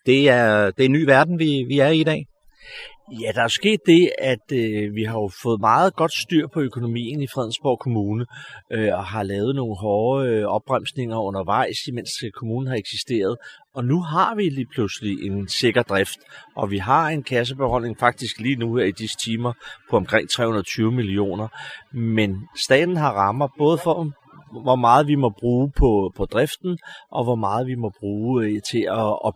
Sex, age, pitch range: male, 30-49, 105-135 Hz